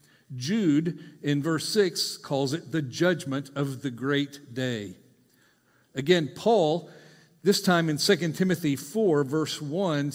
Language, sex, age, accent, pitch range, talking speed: English, male, 50-69, American, 135-165 Hz, 130 wpm